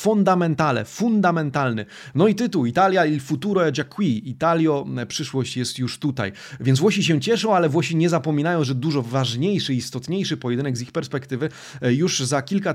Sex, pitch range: male, 130-170 Hz